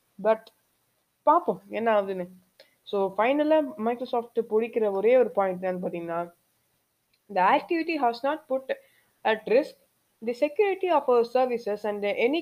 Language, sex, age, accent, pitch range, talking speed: Tamil, female, 20-39, native, 195-260 Hz, 150 wpm